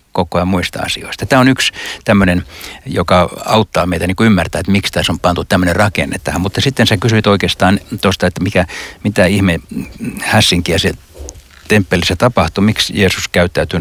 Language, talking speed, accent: Finnish, 165 wpm, native